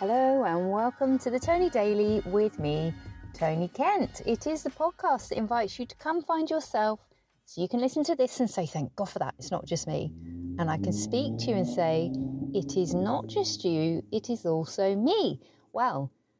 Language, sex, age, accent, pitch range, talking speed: English, female, 30-49, British, 165-235 Hz, 205 wpm